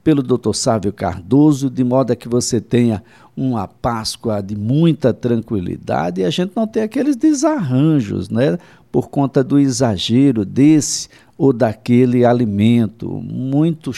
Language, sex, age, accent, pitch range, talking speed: Portuguese, male, 60-79, Brazilian, 105-135 Hz, 135 wpm